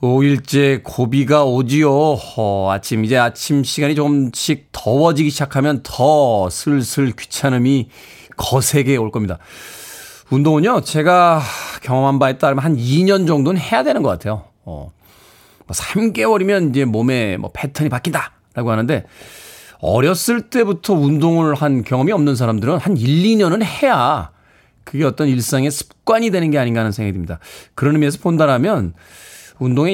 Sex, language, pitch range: male, Korean, 115-155 Hz